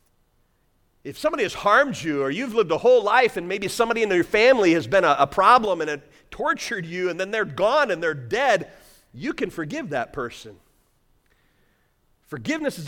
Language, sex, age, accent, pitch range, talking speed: English, male, 40-59, American, 135-205 Hz, 185 wpm